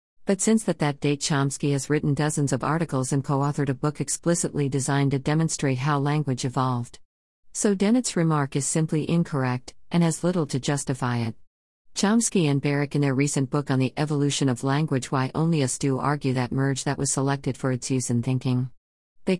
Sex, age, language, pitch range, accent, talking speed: female, 50-69, English, 135-155 Hz, American, 190 wpm